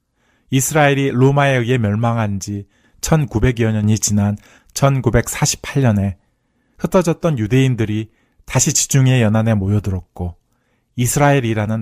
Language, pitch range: Korean, 100-130 Hz